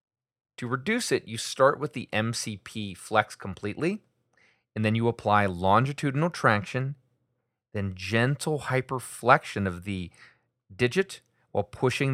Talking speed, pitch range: 120 wpm, 100-125 Hz